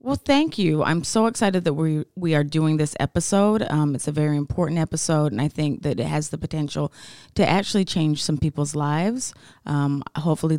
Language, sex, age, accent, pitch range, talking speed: English, female, 30-49, American, 140-160 Hz, 200 wpm